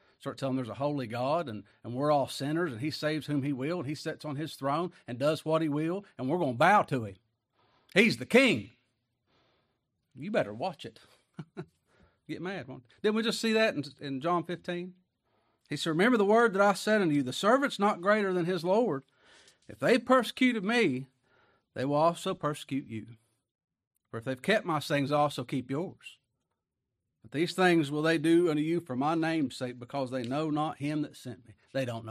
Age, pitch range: 40-59, 125-180 Hz